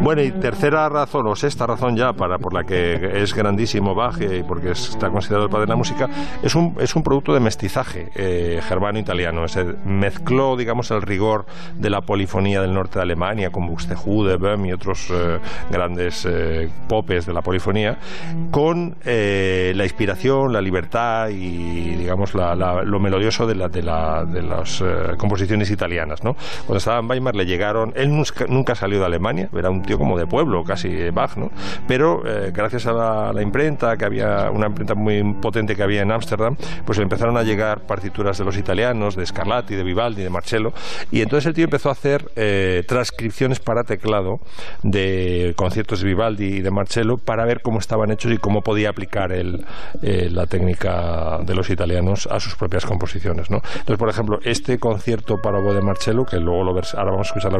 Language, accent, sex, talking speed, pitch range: Spanish, Spanish, male, 195 wpm, 95-115 Hz